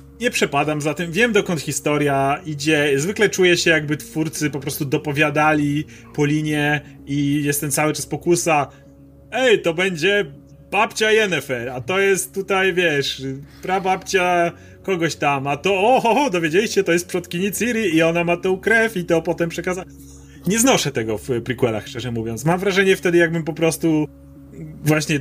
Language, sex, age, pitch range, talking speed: Polish, male, 30-49, 130-175 Hz, 160 wpm